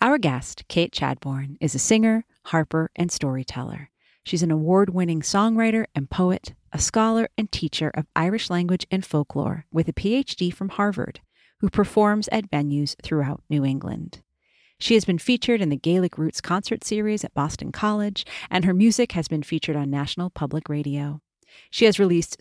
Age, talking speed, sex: 40-59, 170 wpm, female